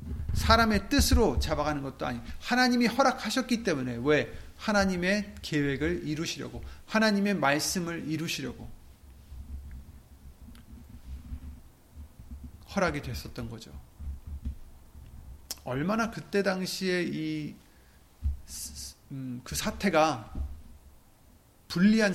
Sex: male